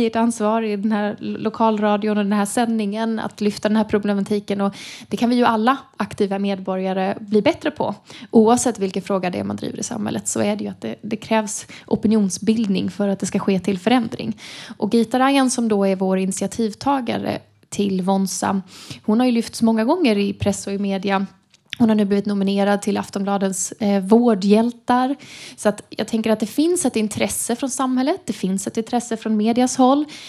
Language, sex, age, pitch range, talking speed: Swedish, female, 20-39, 200-235 Hz, 195 wpm